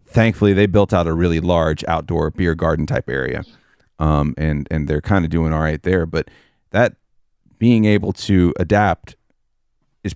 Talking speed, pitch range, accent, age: 165 wpm, 80-100 Hz, American, 40-59